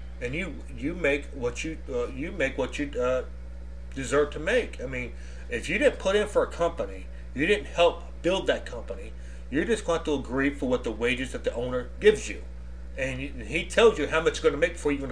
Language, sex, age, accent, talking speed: English, male, 40-59, American, 245 wpm